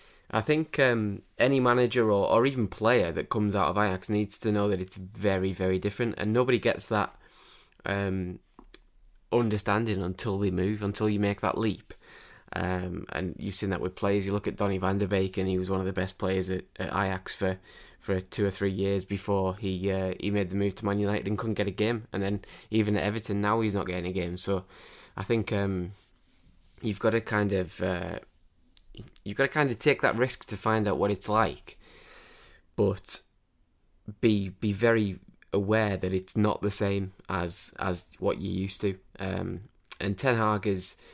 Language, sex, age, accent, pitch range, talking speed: English, male, 20-39, British, 95-110 Hz, 200 wpm